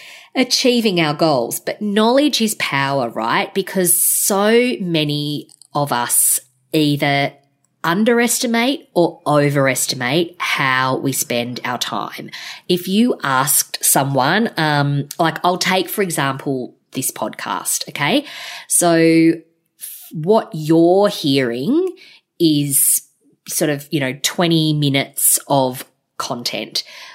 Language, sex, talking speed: English, female, 105 wpm